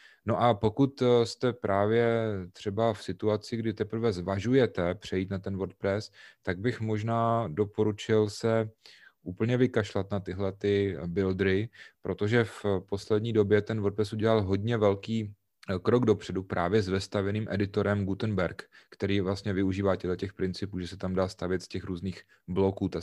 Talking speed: 150 wpm